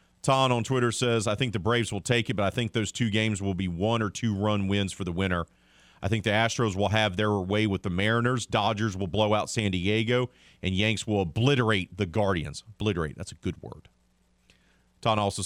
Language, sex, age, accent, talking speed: English, male, 40-59, American, 220 wpm